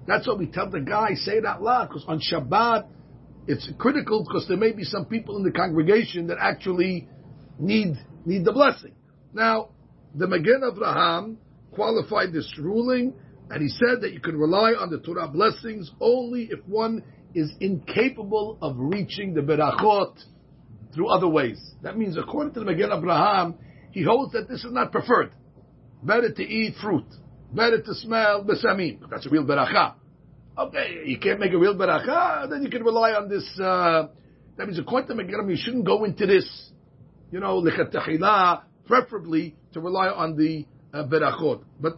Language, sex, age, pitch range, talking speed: Spanish, male, 50-69, 155-225 Hz, 175 wpm